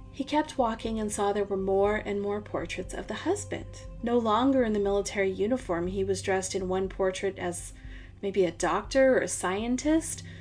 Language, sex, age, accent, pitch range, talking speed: English, female, 30-49, American, 180-220 Hz, 190 wpm